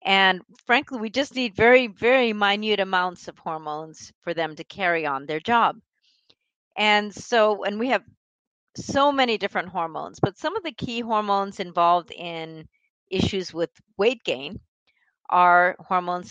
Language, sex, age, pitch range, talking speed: English, female, 40-59, 175-235 Hz, 150 wpm